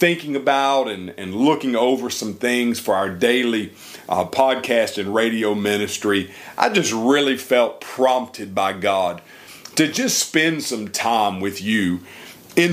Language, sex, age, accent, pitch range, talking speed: English, male, 40-59, American, 110-150 Hz, 145 wpm